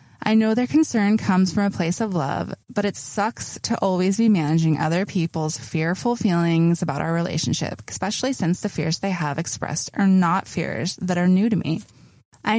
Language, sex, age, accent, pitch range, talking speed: English, female, 20-39, American, 170-220 Hz, 190 wpm